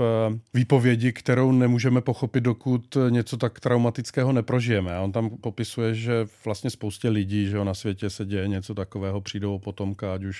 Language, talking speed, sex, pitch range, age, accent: Czech, 155 wpm, male, 105-115 Hz, 40-59, native